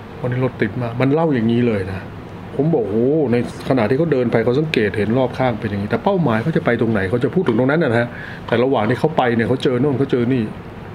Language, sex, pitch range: Thai, male, 110-145 Hz